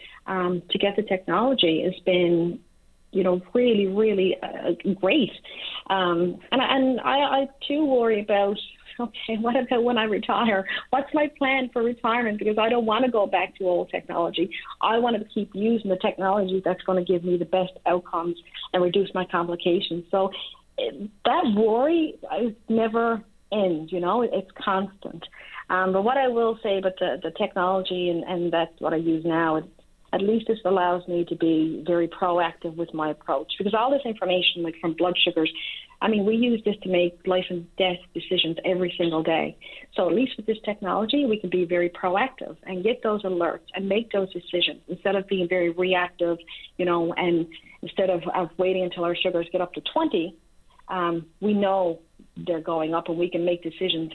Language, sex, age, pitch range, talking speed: English, female, 40-59, 175-220 Hz, 190 wpm